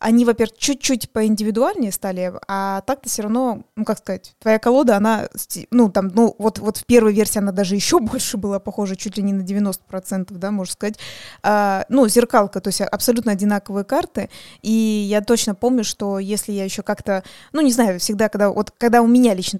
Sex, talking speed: female, 195 wpm